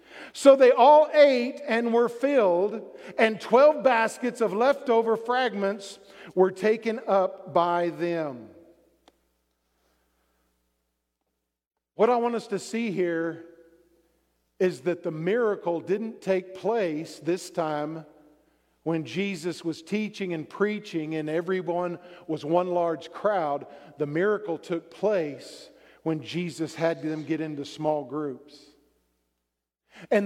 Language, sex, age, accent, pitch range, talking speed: English, male, 50-69, American, 170-250 Hz, 115 wpm